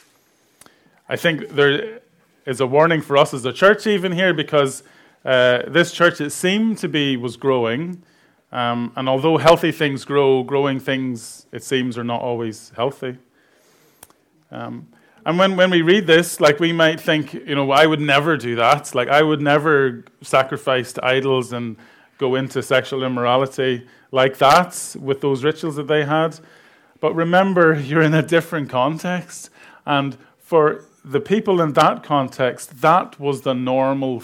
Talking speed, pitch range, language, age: 165 wpm, 130-160 Hz, English, 30-49